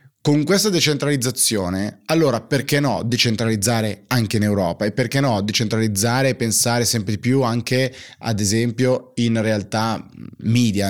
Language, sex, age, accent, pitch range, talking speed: Italian, male, 30-49, native, 110-135 Hz, 140 wpm